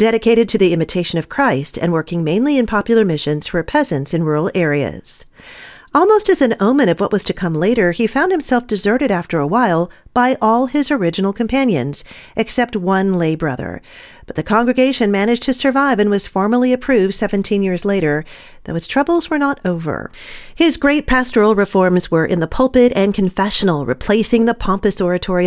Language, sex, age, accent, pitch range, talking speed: English, female, 40-59, American, 175-245 Hz, 180 wpm